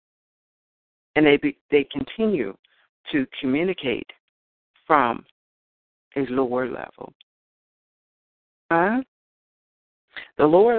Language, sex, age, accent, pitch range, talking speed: English, female, 60-79, American, 155-205 Hz, 80 wpm